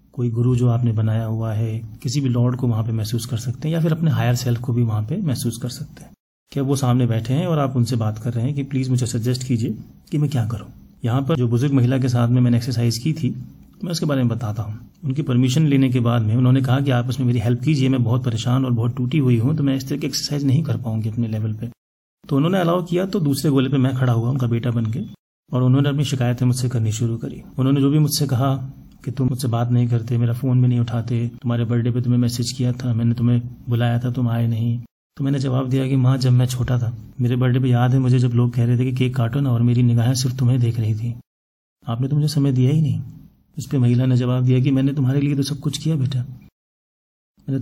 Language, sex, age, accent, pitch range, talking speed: Hindi, male, 30-49, native, 120-135 Hz, 265 wpm